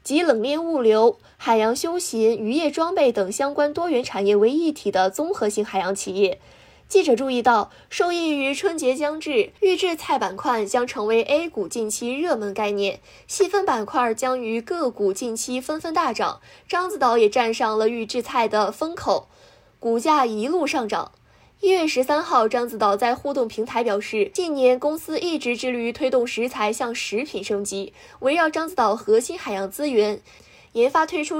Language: Chinese